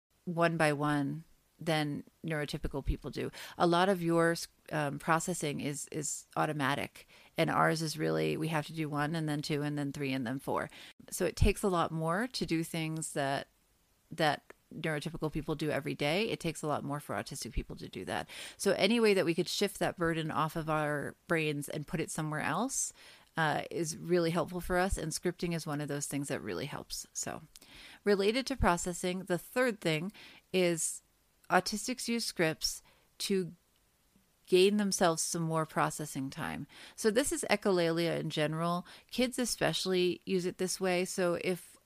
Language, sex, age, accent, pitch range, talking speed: English, female, 30-49, American, 150-185 Hz, 180 wpm